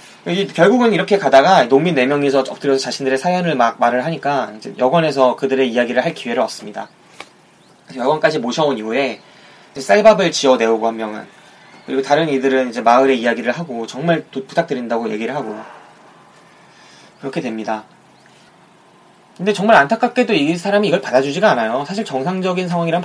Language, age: Korean, 20-39